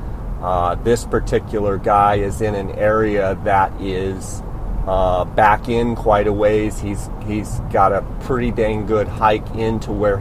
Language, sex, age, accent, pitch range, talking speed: English, male, 30-49, American, 105-115 Hz, 155 wpm